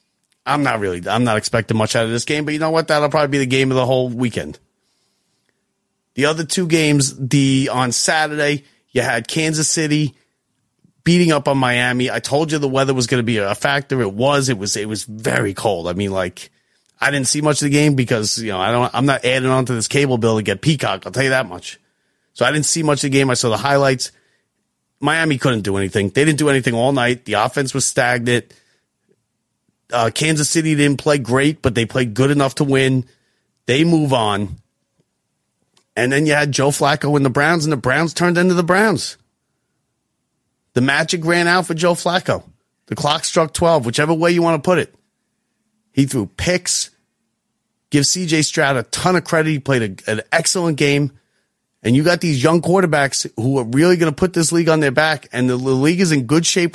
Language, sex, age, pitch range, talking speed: English, male, 30-49, 125-155 Hz, 215 wpm